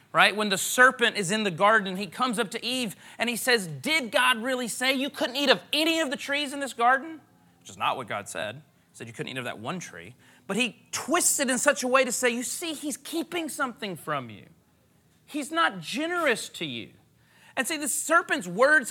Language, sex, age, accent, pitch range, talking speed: English, male, 30-49, American, 200-285 Hz, 230 wpm